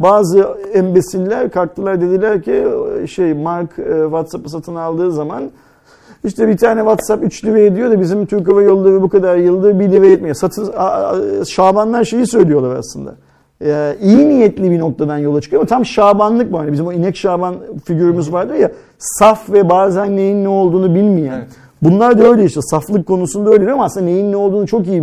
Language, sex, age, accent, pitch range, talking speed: Turkish, male, 50-69, native, 155-205 Hz, 185 wpm